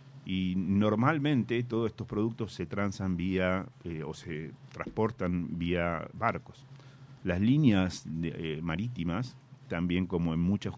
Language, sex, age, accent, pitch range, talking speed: Spanish, male, 40-59, Argentinian, 80-120 Hz, 130 wpm